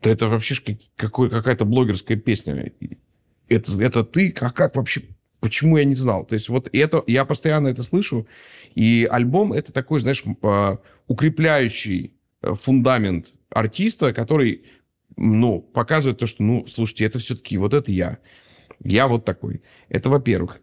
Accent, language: native, Russian